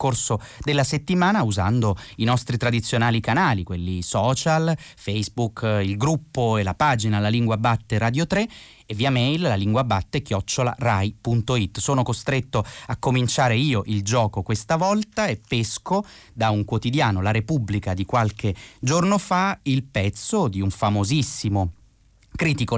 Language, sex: Italian, male